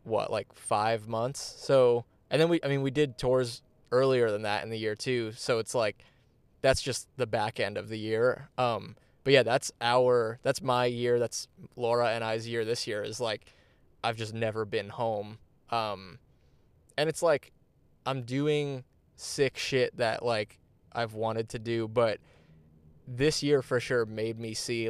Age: 20-39